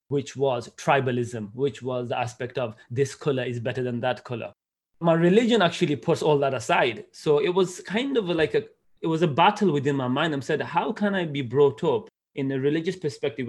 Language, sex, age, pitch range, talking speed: English, male, 30-49, 125-150 Hz, 215 wpm